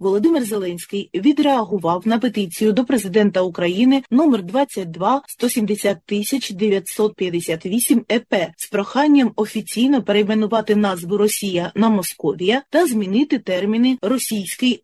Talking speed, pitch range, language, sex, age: 100 wpm, 200-250 Hz, Ukrainian, female, 30-49